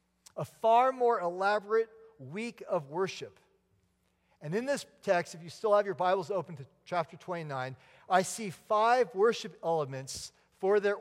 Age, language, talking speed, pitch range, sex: 40-59, English, 155 wpm, 145-195 Hz, male